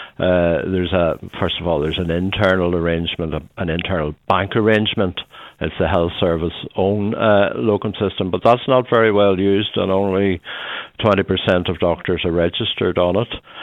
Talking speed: 165 wpm